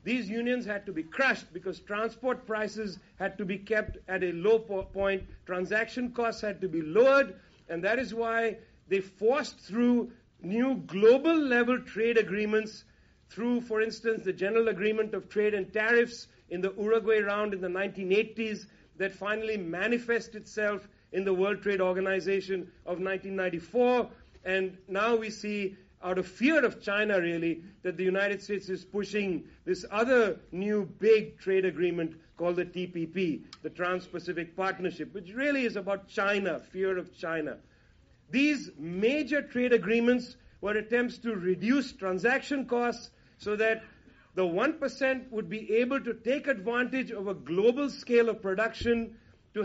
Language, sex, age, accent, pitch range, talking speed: English, male, 50-69, Indian, 190-235 Hz, 150 wpm